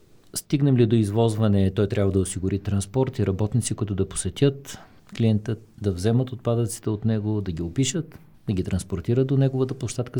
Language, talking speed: Bulgarian, 170 wpm